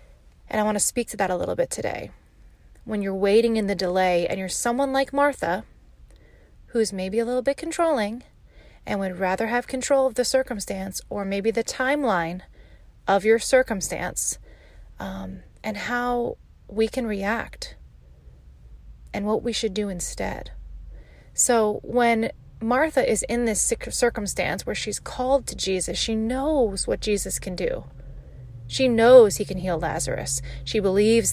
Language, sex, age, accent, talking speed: English, female, 30-49, American, 155 wpm